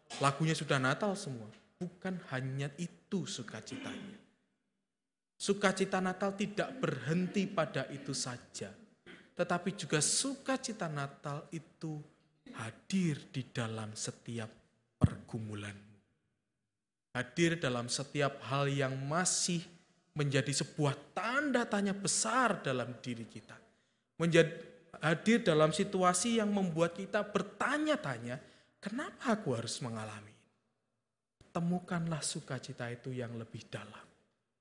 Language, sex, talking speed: Indonesian, male, 100 wpm